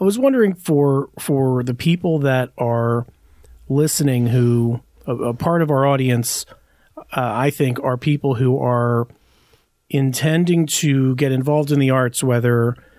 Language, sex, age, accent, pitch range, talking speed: English, male, 40-59, American, 120-140 Hz, 150 wpm